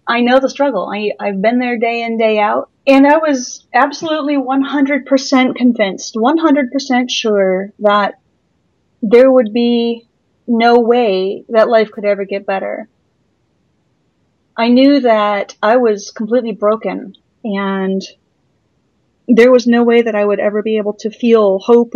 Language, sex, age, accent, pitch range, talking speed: English, female, 30-49, American, 200-245 Hz, 145 wpm